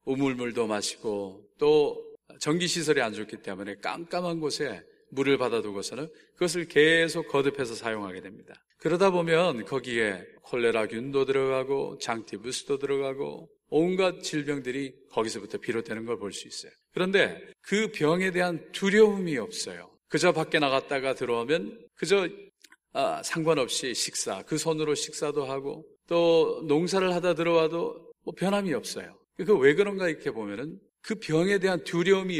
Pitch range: 130-185 Hz